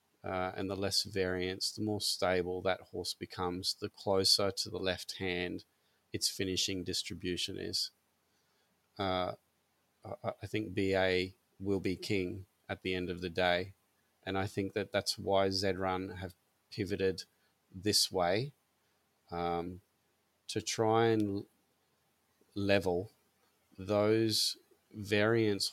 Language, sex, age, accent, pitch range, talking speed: English, male, 30-49, Australian, 90-100 Hz, 125 wpm